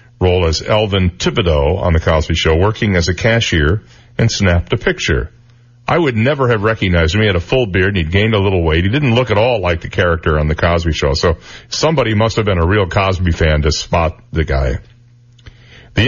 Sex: male